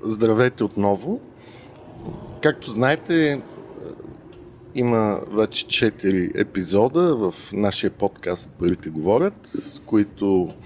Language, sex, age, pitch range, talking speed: Bulgarian, male, 50-69, 95-115 Hz, 85 wpm